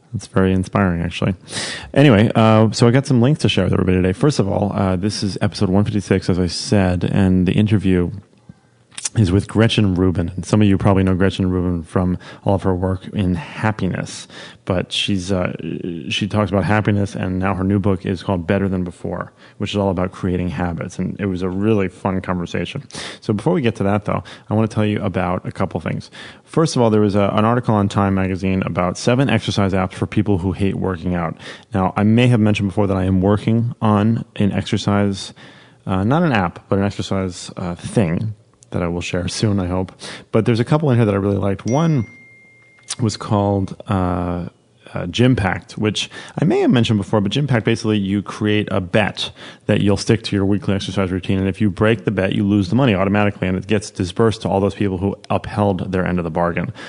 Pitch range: 95-110 Hz